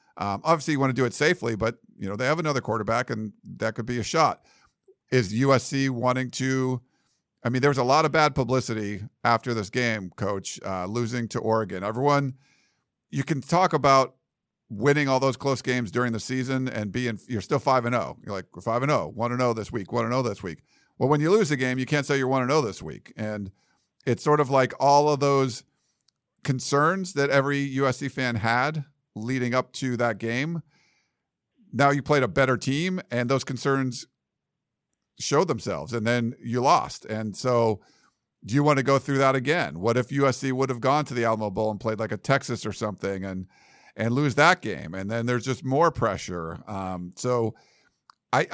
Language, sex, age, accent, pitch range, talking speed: English, male, 50-69, American, 115-145 Hz, 200 wpm